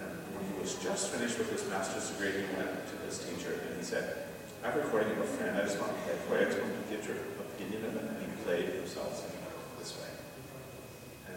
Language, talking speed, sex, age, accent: English, 245 wpm, male, 40-59, American